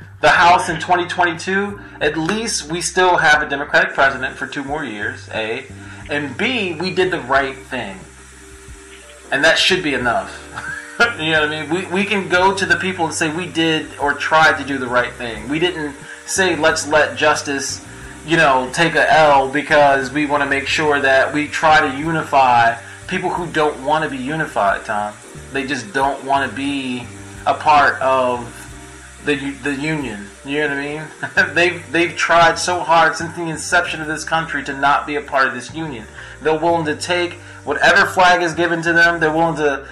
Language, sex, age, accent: English, male, 30-49, American